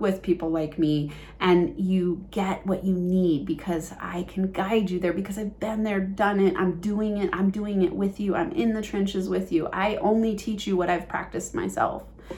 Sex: female